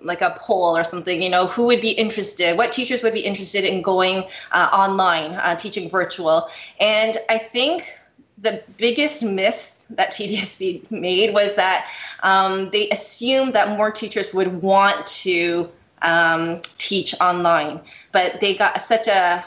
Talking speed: 155 wpm